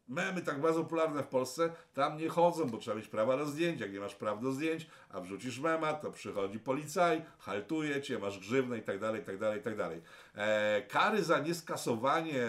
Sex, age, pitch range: male, 50-69, 120-155 Hz